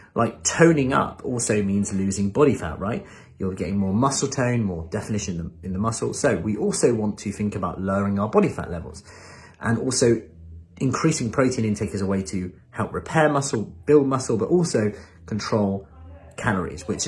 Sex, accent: male, British